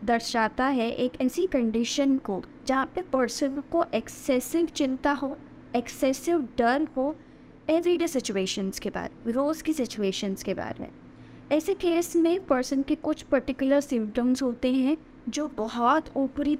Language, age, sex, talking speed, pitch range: Hindi, 20-39, female, 145 wpm, 235-300 Hz